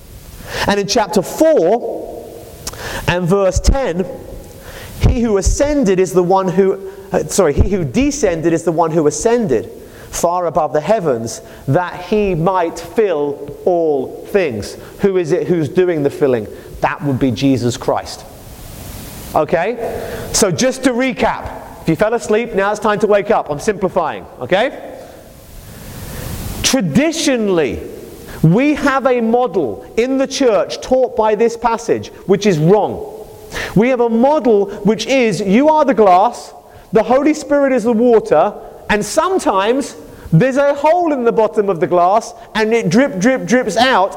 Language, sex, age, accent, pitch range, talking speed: English, male, 30-49, British, 180-255 Hz, 150 wpm